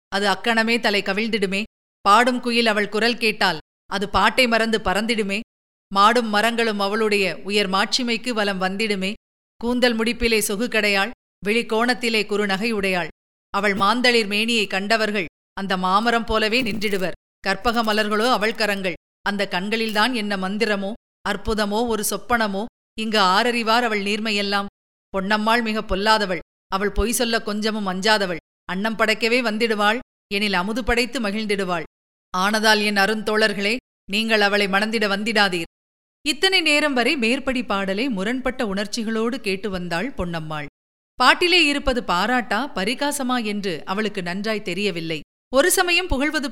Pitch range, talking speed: 200-245 Hz, 120 wpm